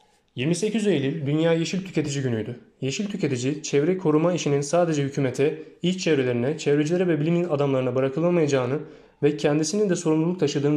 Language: Turkish